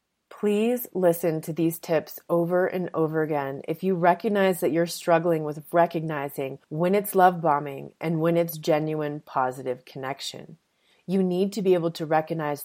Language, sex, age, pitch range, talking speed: English, female, 30-49, 155-185 Hz, 160 wpm